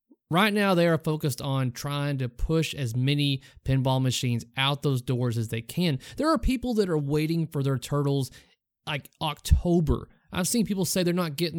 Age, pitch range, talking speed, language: 30-49, 130-185 Hz, 190 wpm, English